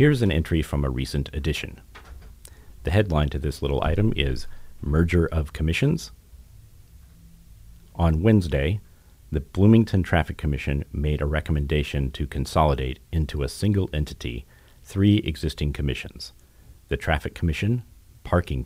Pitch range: 75-90 Hz